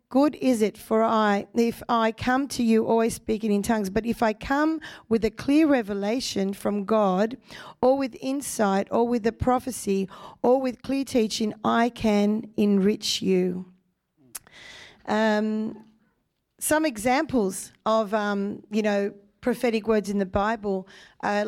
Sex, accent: female, Australian